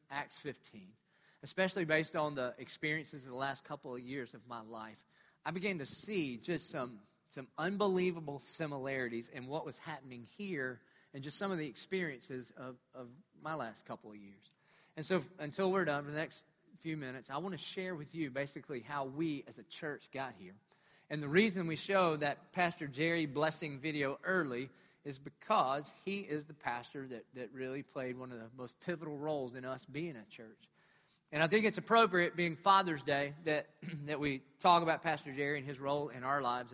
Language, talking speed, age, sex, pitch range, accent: English, 200 wpm, 40-59, male, 135-170 Hz, American